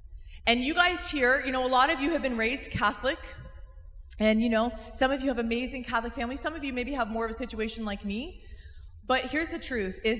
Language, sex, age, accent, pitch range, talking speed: English, female, 30-49, American, 185-255 Hz, 235 wpm